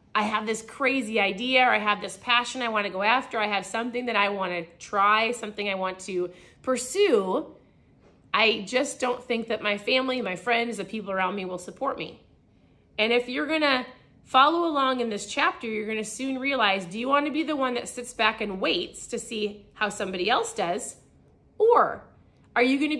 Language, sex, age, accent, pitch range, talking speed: English, female, 30-49, American, 215-275 Hz, 200 wpm